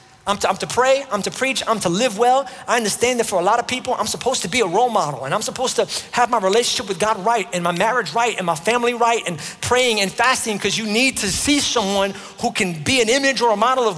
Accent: American